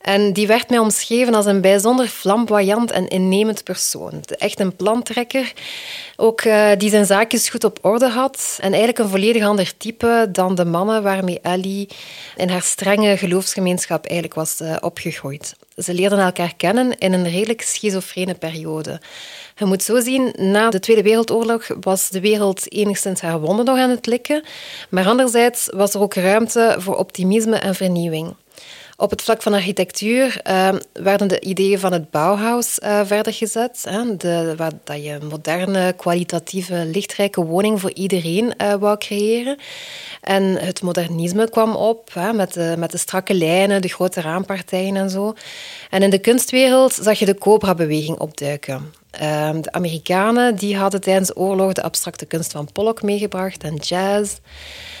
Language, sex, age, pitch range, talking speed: Dutch, female, 20-39, 180-220 Hz, 160 wpm